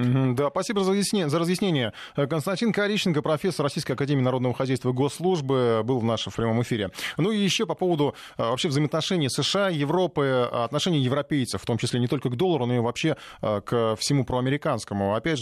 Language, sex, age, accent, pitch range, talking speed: Russian, male, 20-39, native, 120-160 Hz, 165 wpm